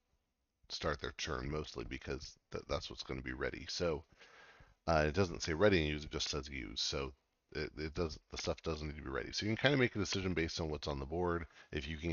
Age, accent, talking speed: 30-49, American, 250 wpm